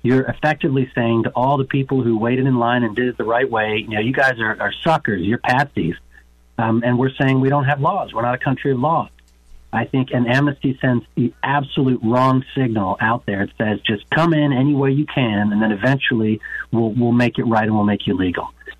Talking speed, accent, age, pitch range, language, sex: 235 wpm, American, 40-59, 110-135 Hz, English, male